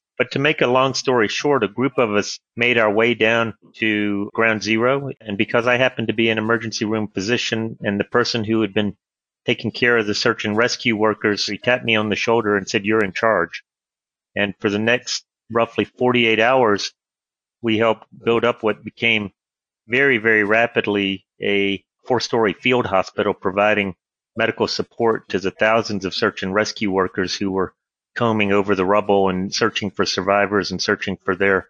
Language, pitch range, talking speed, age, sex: English, 105-115 Hz, 185 wpm, 30-49, male